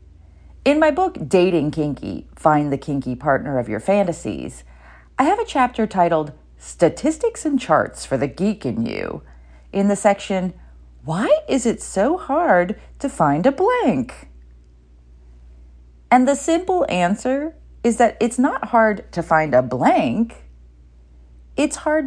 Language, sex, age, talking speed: English, female, 40-59, 140 wpm